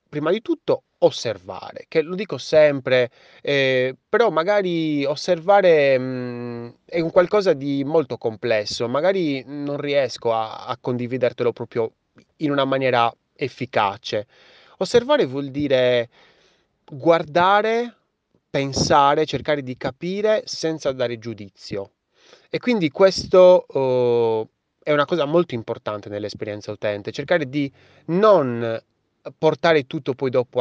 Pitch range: 120-165 Hz